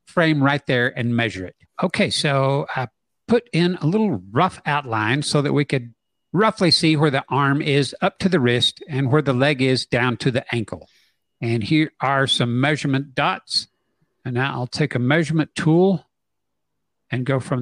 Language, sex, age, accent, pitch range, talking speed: English, male, 60-79, American, 130-180 Hz, 185 wpm